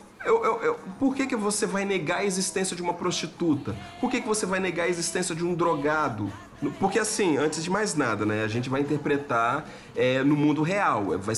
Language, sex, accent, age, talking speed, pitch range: Portuguese, male, Brazilian, 40-59, 195 wpm, 130-205 Hz